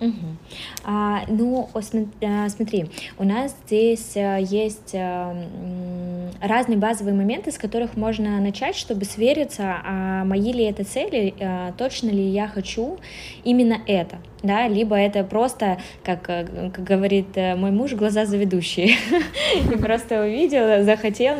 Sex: female